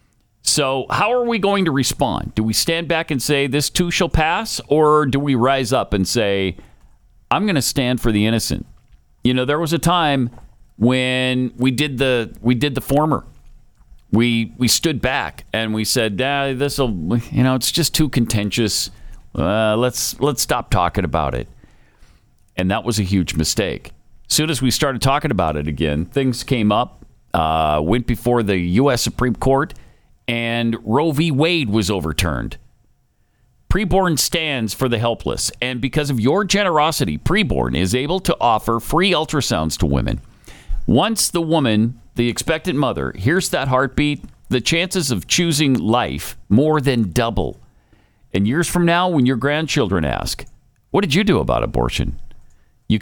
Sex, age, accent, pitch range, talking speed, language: male, 50-69, American, 110-150 Hz, 170 wpm, English